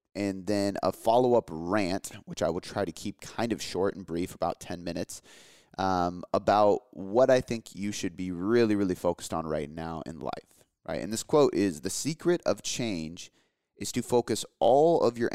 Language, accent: English, American